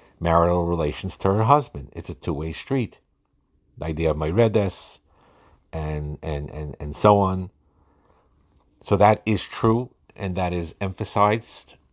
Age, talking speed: 50-69, 140 wpm